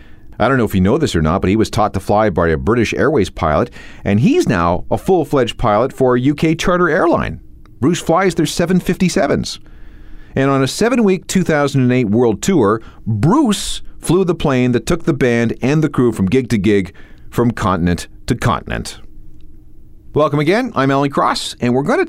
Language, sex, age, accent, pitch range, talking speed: English, male, 40-59, American, 90-135 Hz, 190 wpm